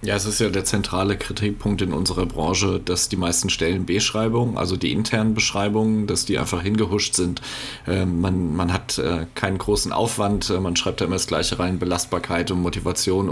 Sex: male